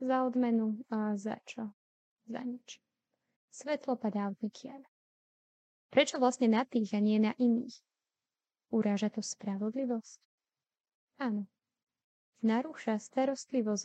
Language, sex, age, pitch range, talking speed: Slovak, female, 20-39, 215-255 Hz, 110 wpm